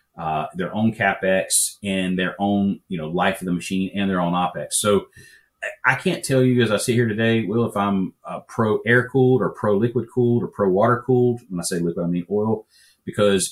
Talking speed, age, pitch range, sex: 220 wpm, 30-49, 95-120 Hz, male